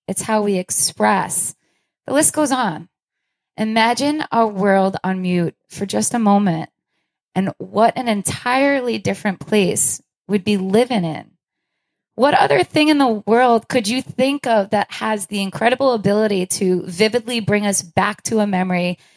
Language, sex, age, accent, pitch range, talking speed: English, female, 20-39, American, 180-225 Hz, 155 wpm